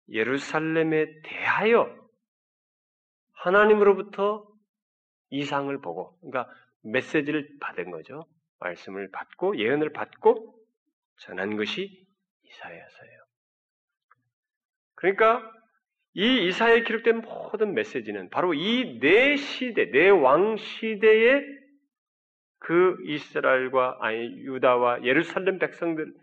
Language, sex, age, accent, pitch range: Korean, male, 40-59, native, 155-245 Hz